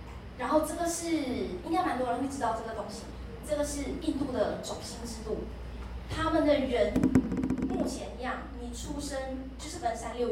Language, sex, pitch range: Chinese, female, 225-305 Hz